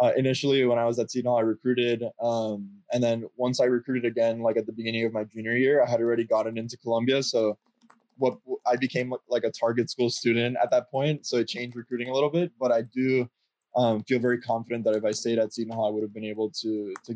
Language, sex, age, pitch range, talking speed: English, male, 20-39, 115-125 Hz, 250 wpm